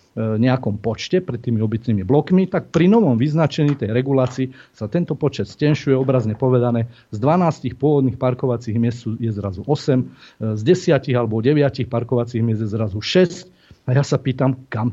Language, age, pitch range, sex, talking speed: Slovak, 40-59, 120-145 Hz, male, 160 wpm